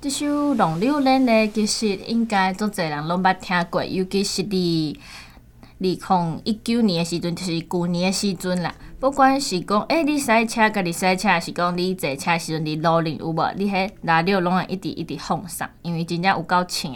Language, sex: Chinese, female